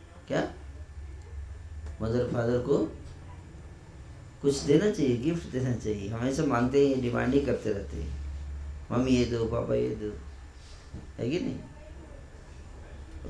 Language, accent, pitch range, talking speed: Hindi, native, 75-125 Hz, 120 wpm